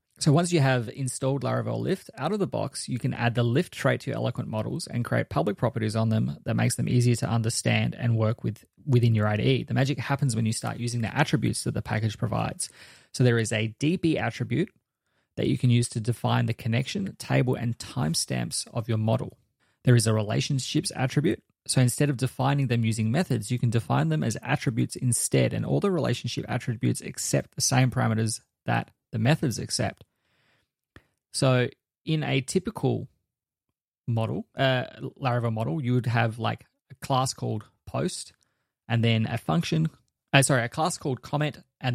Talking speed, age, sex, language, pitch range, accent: 185 wpm, 20-39, male, English, 115-135 Hz, Australian